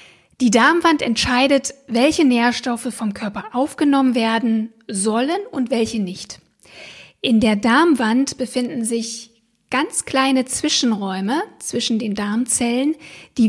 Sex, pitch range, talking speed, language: female, 220-270 Hz, 110 wpm, German